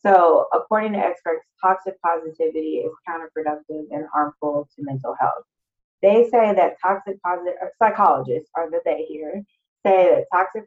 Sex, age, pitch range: female, 20-39, 150-185 Hz